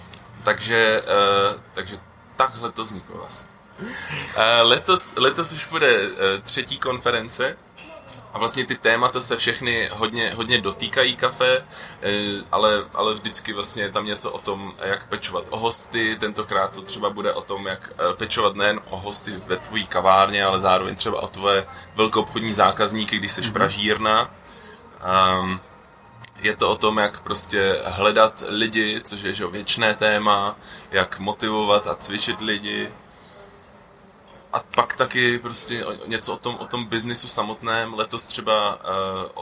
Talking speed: 135 wpm